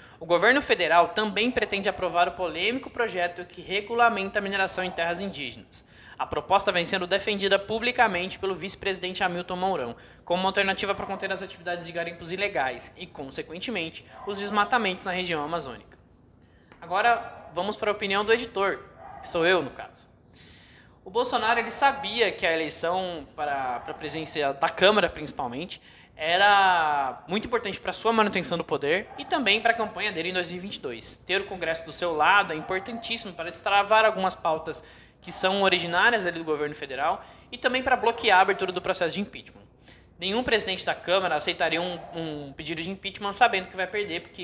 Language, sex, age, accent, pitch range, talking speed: Portuguese, male, 20-39, Brazilian, 170-205 Hz, 175 wpm